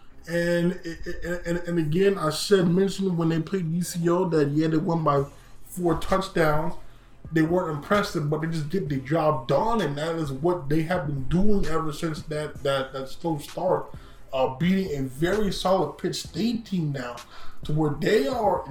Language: English